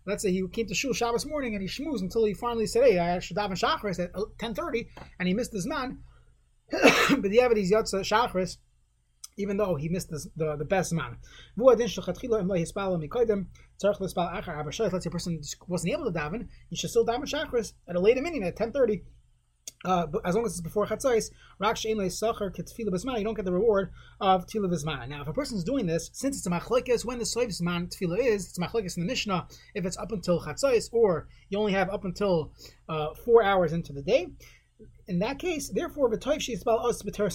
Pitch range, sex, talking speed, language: 165-225 Hz, male, 195 wpm, English